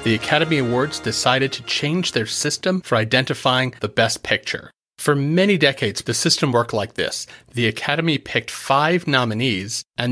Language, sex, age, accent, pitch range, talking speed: English, male, 40-59, American, 115-155 Hz, 160 wpm